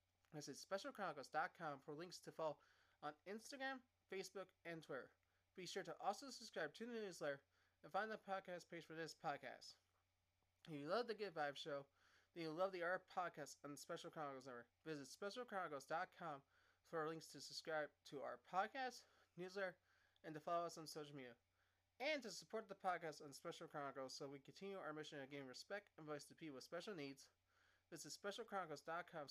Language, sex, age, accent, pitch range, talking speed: English, male, 20-39, American, 145-180 Hz, 180 wpm